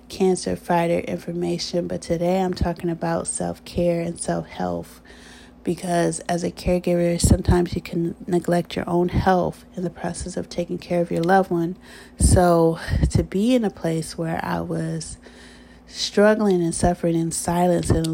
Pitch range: 165-185 Hz